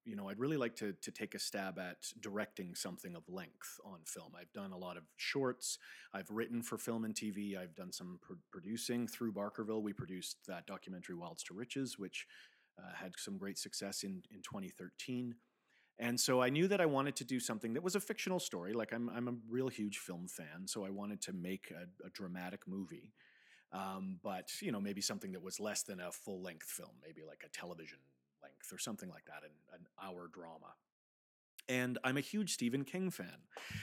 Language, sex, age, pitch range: English, male, 40-59, 95-130 Hz